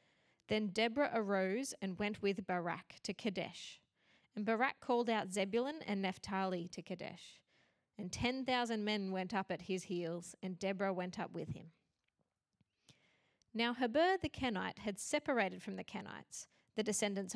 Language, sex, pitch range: English, female, 190-230 Hz